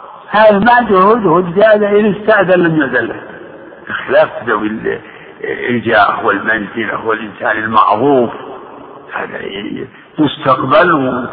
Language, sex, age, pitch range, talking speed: Arabic, male, 60-79, 135-195 Hz, 90 wpm